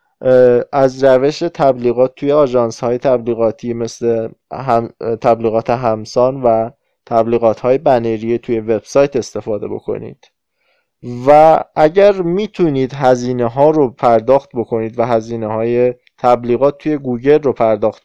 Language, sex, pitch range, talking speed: Persian, male, 115-145 Hz, 110 wpm